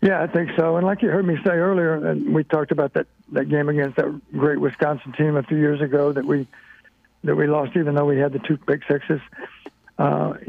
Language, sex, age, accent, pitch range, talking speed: English, male, 60-79, American, 155-185 Hz, 235 wpm